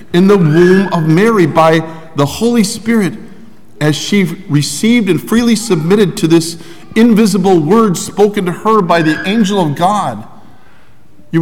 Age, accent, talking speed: 50-69, American, 145 wpm